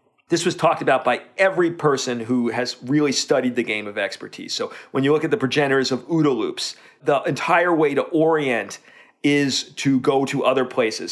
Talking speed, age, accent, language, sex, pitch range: 195 wpm, 40-59, American, English, male, 130-170 Hz